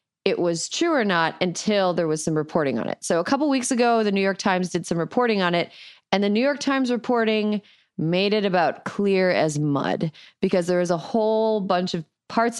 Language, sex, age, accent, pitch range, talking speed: English, female, 30-49, American, 165-210 Hz, 220 wpm